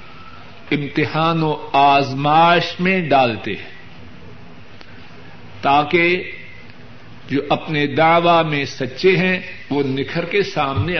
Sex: male